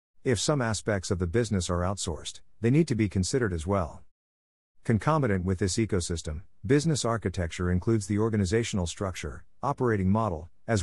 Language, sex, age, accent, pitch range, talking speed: English, male, 50-69, American, 90-115 Hz, 155 wpm